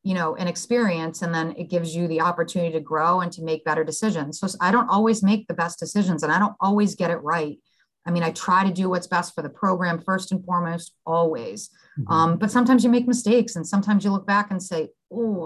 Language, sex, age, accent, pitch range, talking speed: English, female, 30-49, American, 165-210 Hz, 240 wpm